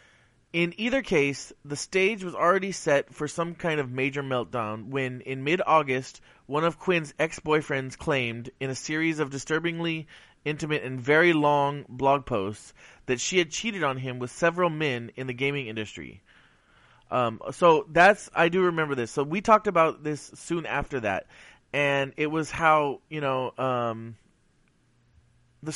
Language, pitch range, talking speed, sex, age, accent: English, 125-165 Hz, 160 wpm, male, 20-39, American